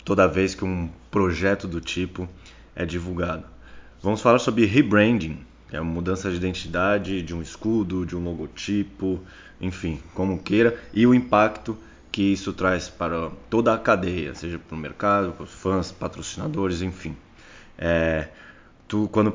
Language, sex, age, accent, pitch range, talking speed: Portuguese, male, 20-39, Brazilian, 85-100 Hz, 155 wpm